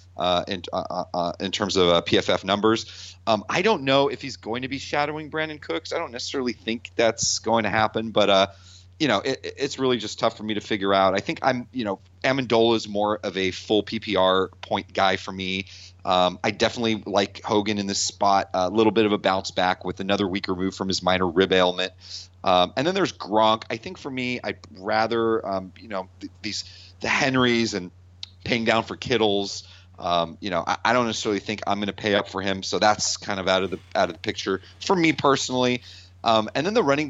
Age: 30-49